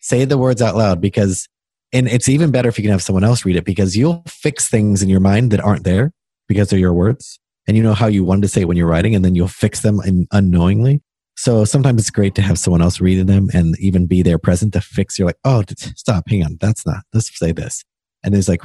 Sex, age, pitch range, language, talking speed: male, 30-49, 90-120 Hz, English, 265 wpm